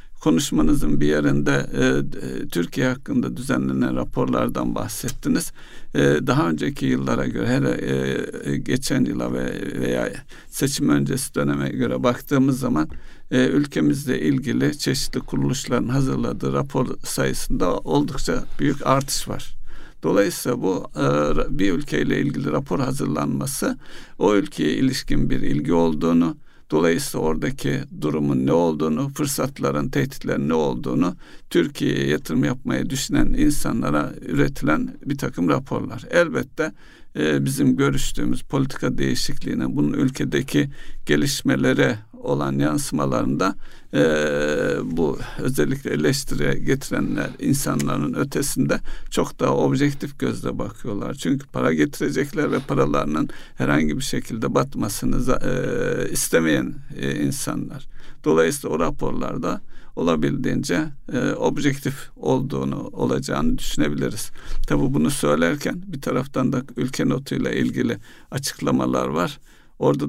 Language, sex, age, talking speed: Turkish, male, 60-79, 105 wpm